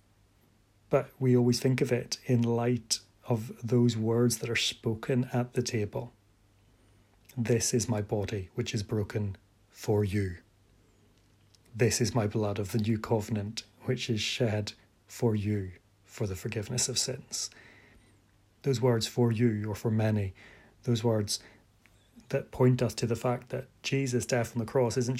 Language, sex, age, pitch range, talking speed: English, male, 30-49, 105-125 Hz, 155 wpm